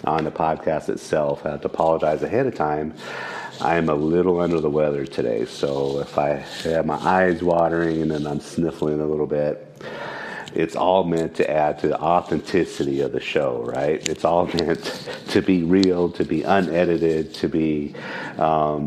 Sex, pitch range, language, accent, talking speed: male, 75-80 Hz, English, American, 180 wpm